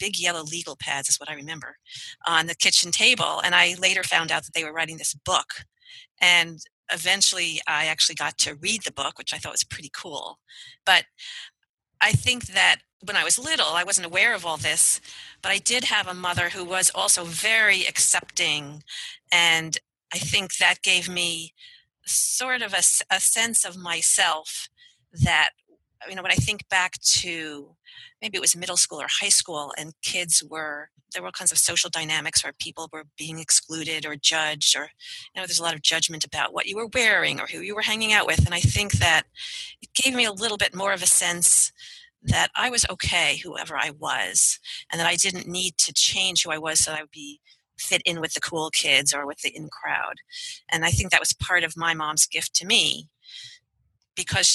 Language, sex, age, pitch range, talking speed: English, female, 40-59, 160-200 Hz, 210 wpm